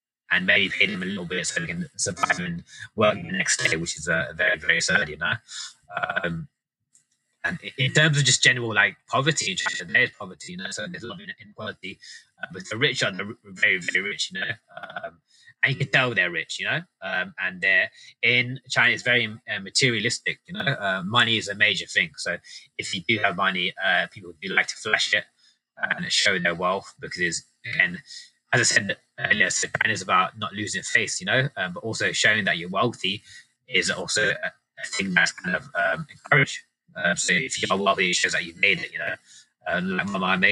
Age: 20-39